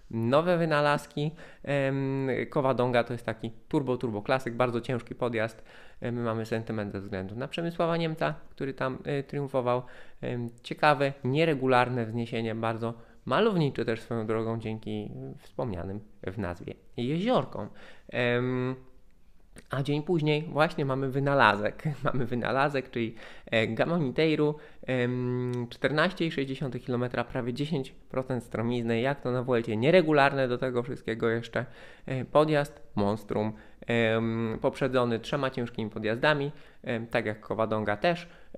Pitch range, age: 115-140 Hz, 20-39